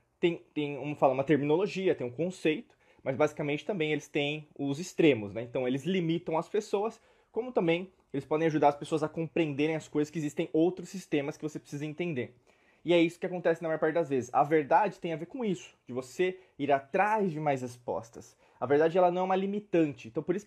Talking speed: 220 wpm